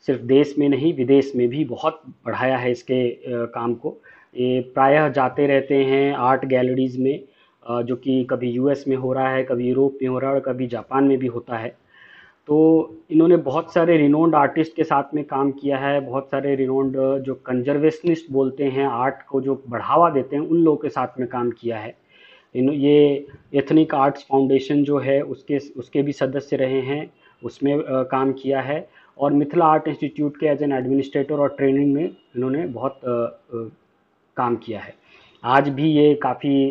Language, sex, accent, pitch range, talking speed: English, male, Indian, 130-145 Hz, 130 wpm